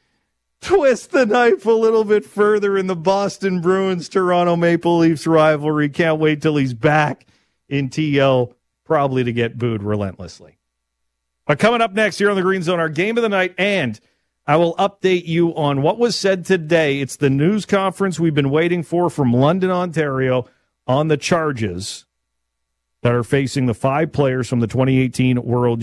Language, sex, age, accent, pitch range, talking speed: English, male, 40-59, American, 120-180 Hz, 170 wpm